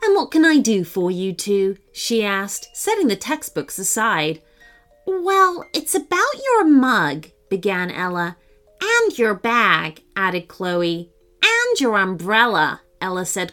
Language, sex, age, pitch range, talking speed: English, female, 30-49, 170-275 Hz, 135 wpm